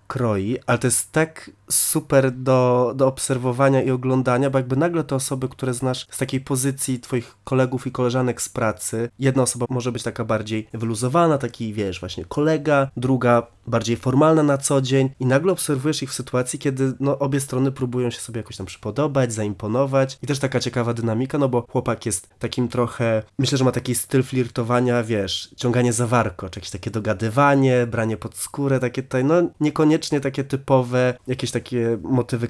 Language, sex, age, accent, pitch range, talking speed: Polish, male, 20-39, native, 115-135 Hz, 180 wpm